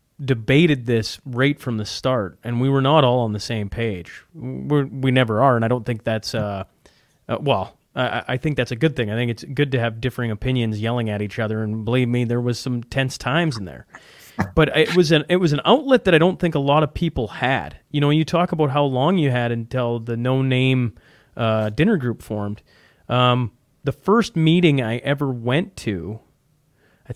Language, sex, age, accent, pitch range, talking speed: English, male, 30-49, American, 115-145 Hz, 210 wpm